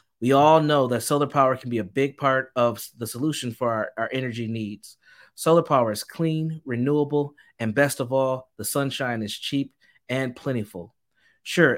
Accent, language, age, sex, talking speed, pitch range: American, English, 30-49, male, 180 wpm, 120-140 Hz